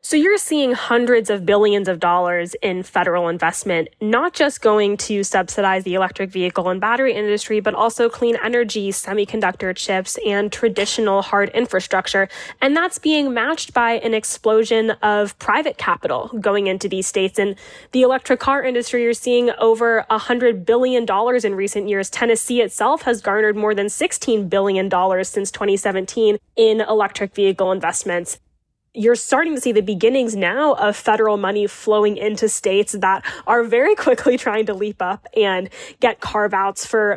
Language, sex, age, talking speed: English, female, 10-29, 160 wpm